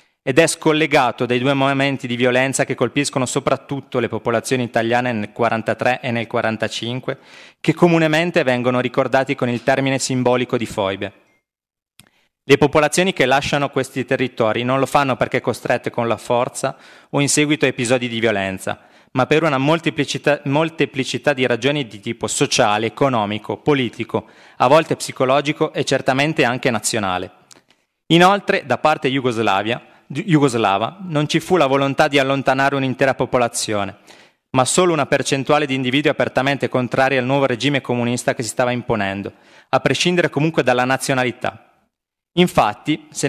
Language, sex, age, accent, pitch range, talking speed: Italian, male, 30-49, native, 120-145 Hz, 145 wpm